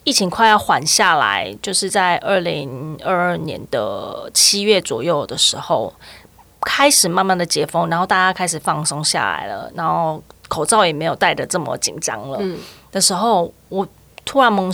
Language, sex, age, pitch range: Chinese, female, 20-39, 155-195 Hz